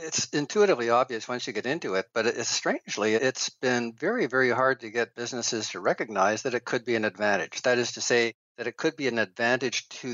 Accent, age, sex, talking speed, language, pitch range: American, 50-69, male, 220 wpm, English, 110-130 Hz